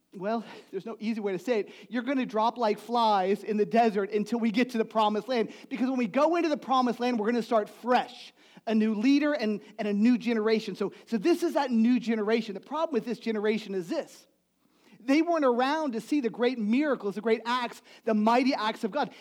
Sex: male